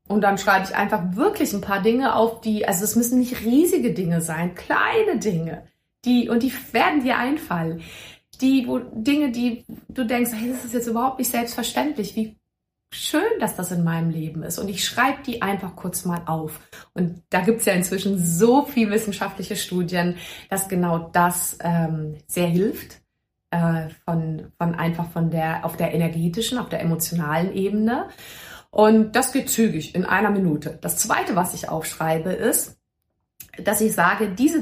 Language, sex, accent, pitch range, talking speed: German, female, German, 170-235 Hz, 175 wpm